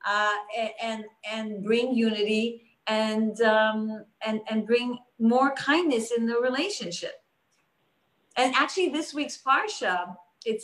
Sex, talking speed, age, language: female, 120 wpm, 40-59, English